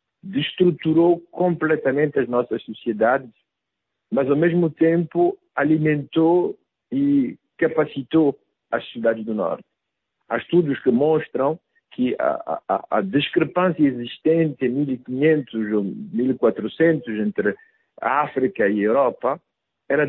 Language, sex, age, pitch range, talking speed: Portuguese, male, 60-79, 125-165 Hz, 110 wpm